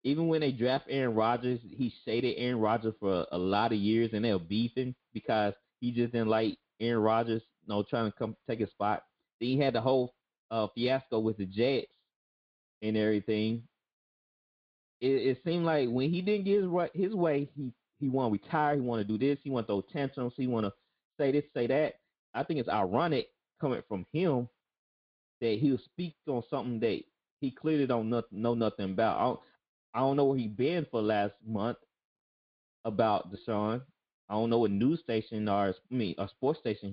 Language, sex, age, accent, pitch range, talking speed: English, male, 30-49, American, 110-160 Hz, 205 wpm